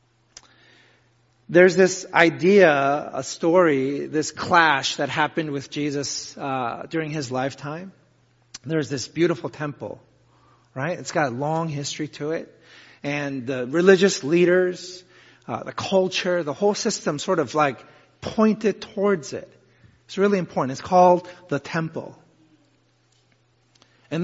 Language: English